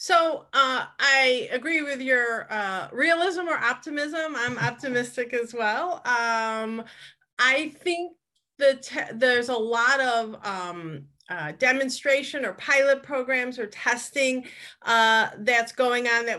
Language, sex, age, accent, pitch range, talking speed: English, female, 30-49, American, 200-250 Hz, 130 wpm